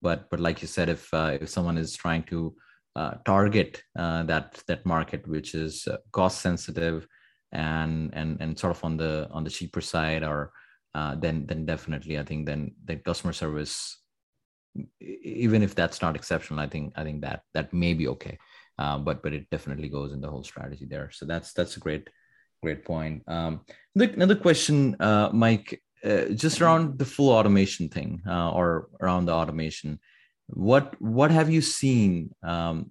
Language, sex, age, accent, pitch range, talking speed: English, male, 30-49, Indian, 80-95 Hz, 180 wpm